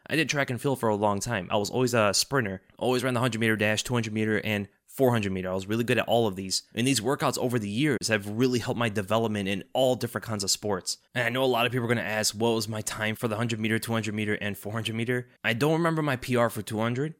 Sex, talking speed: male, 285 wpm